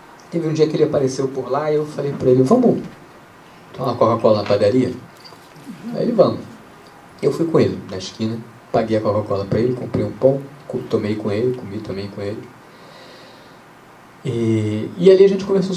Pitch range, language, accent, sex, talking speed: 115-170 Hz, Portuguese, Brazilian, male, 185 wpm